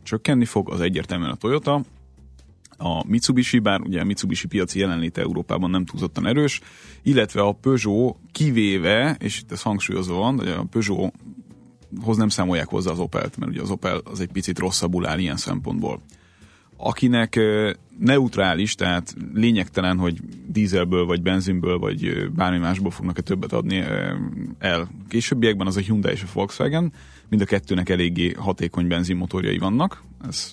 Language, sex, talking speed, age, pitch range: Hungarian, male, 150 wpm, 30-49, 90-110 Hz